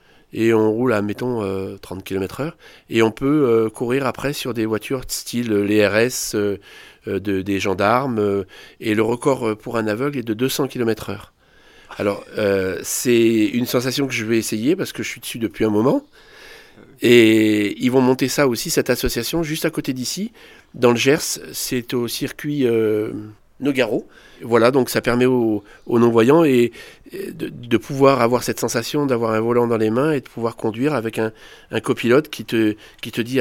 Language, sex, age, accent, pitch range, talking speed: French, male, 40-59, French, 110-140 Hz, 195 wpm